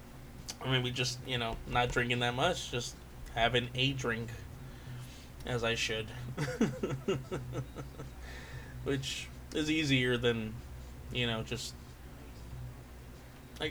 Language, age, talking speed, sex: English, 20-39, 100 wpm, male